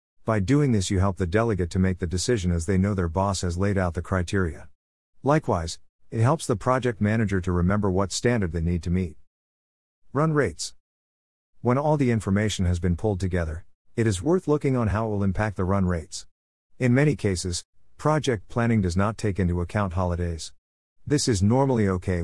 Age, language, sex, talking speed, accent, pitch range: 50-69, English, male, 195 wpm, American, 85-115 Hz